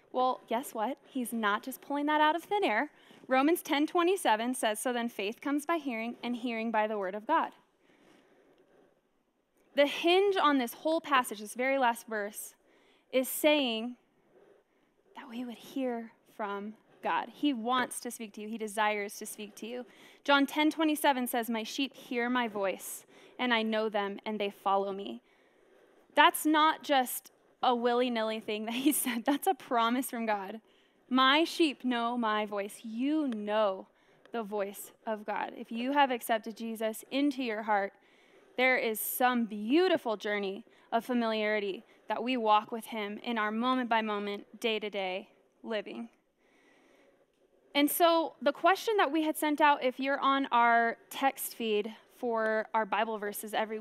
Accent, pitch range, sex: American, 220-285 Hz, female